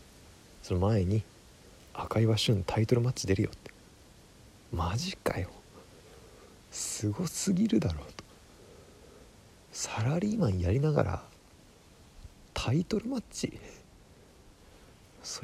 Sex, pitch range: male, 80-105 Hz